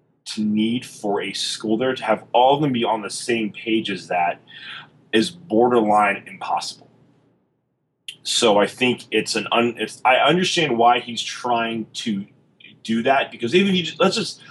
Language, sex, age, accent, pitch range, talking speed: English, male, 30-49, American, 110-150 Hz, 170 wpm